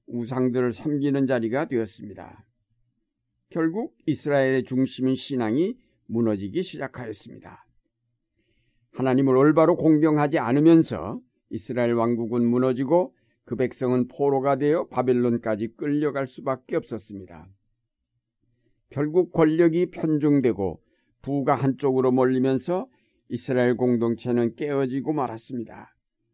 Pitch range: 115-145 Hz